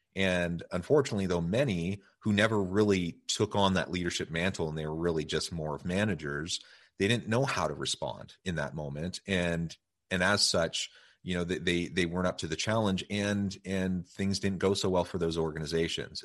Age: 30-49